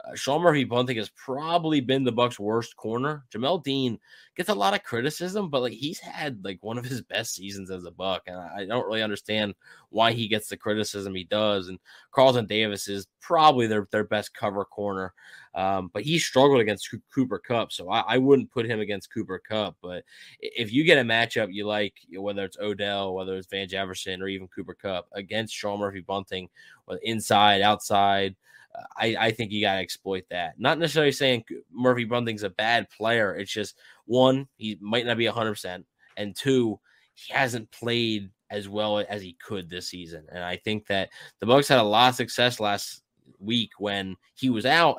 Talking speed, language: 195 wpm, English